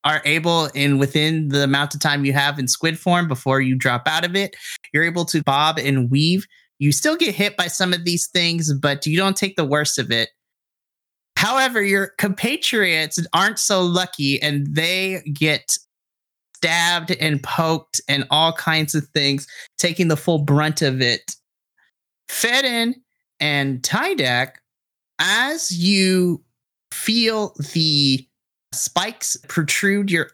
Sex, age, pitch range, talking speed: male, 30-49, 140-180 Hz, 150 wpm